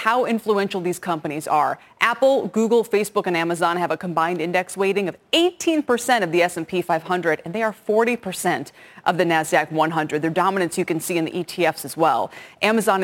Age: 20-39